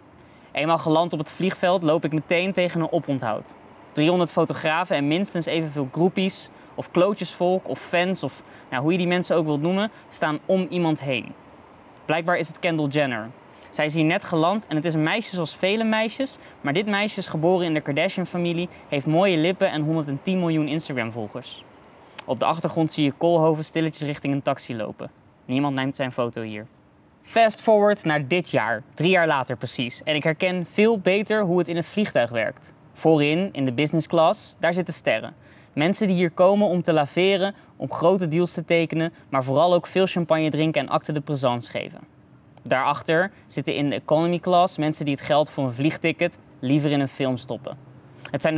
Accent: Dutch